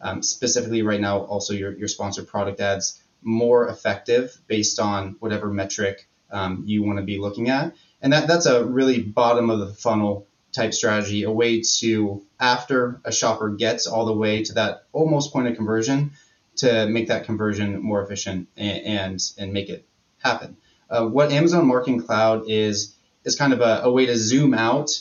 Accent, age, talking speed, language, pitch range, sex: American, 20-39, 185 wpm, English, 105-125 Hz, male